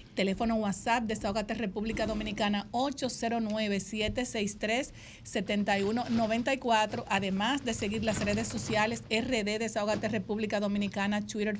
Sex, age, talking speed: female, 50-69, 95 wpm